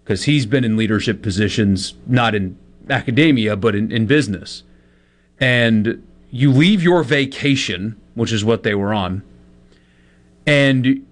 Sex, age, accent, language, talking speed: male, 30-49, American, English, 135 wpm